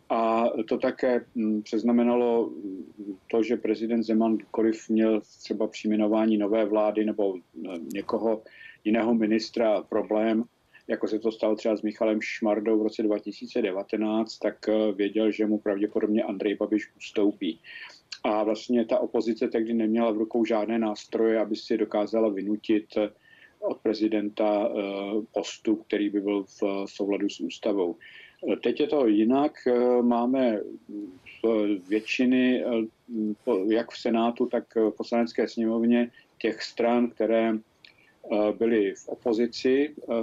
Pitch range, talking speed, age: 105-115 Hz, 120 wpm, 50-69